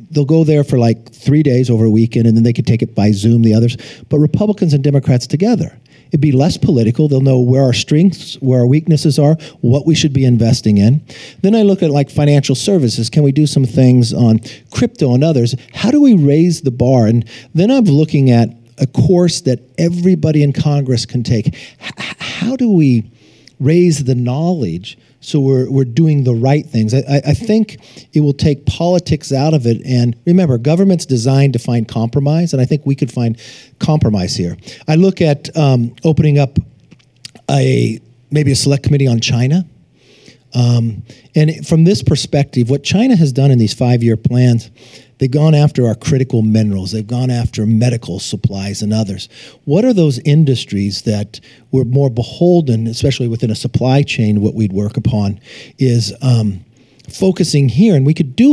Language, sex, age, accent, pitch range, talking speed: English, male, 50-69, American, 120-155 Hz, 190 wpm